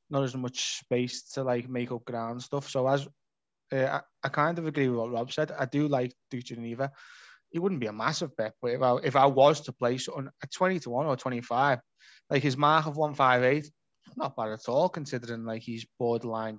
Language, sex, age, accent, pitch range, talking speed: English, male, 20-39, British, 120-145 Hz, 215 wpm